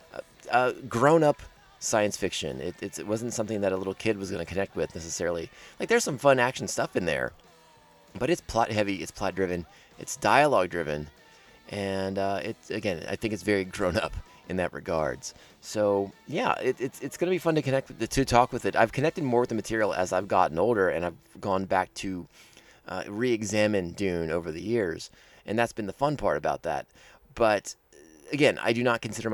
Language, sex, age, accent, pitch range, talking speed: English, male, 30-49, American, 95-125 Hz, 200 wpm